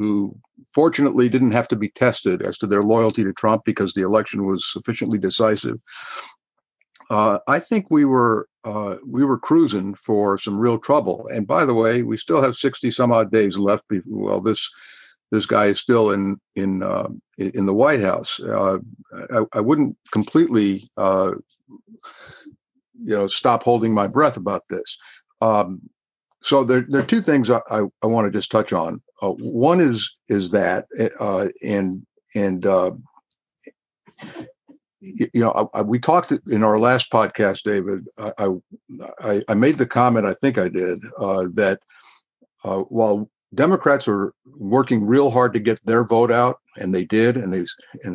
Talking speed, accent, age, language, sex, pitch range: 170 wpm, American, 50-69, English, male, 100-130 Hz